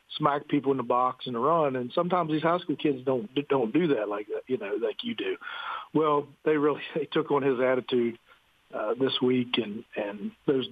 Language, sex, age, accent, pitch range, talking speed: English, male, 50-69, American, 120-140 Hz, 220 wpm